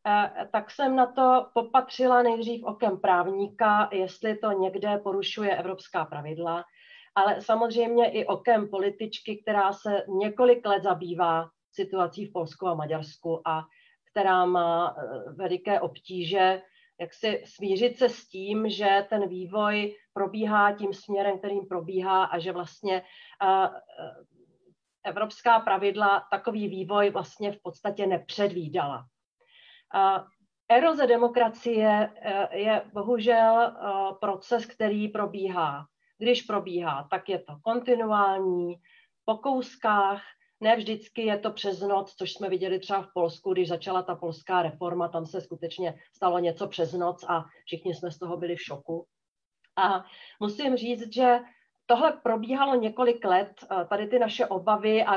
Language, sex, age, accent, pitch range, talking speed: Czech, female, 40-59, native, 185-225 Hz, 130 wpm